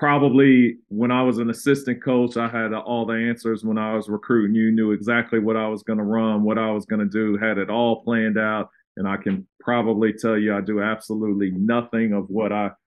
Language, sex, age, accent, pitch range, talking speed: English, male, 40-59, American, 110-120 Hz, 230 wpm